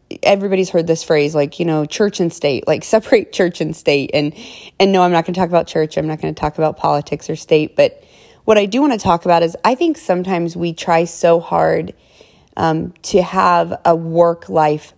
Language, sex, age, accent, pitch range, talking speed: English, female, 30-49, American, 165-190 Hz, 225 wpm